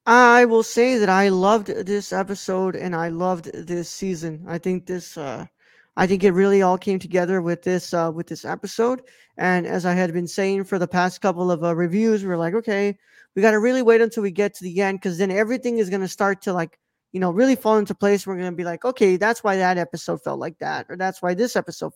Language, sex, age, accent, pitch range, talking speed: English, male, 20-39, American, 180-220 Hz, 240 wpm